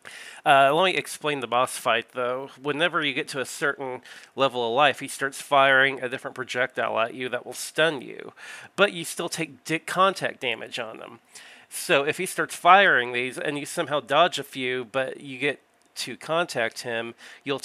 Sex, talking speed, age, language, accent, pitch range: male, 190 wpm, 30-49, English, American, 120-145 Hz